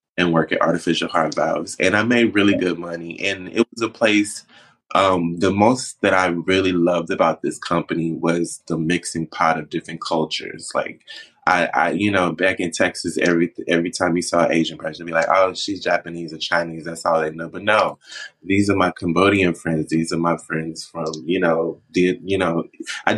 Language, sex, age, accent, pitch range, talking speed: English, male, 20-39, American, 80-95 Hz, 200 wpm